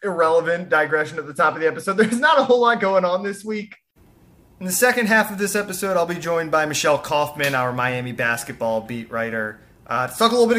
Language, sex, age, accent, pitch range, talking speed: English, male, 30-49, American, 125-175 Hz, 225 wpm